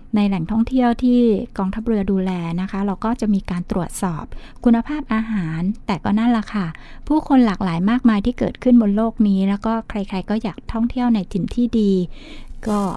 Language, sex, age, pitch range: Thai, female, 60-79, 190-235 Hz